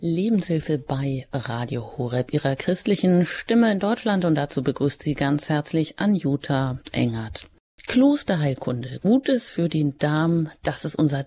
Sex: female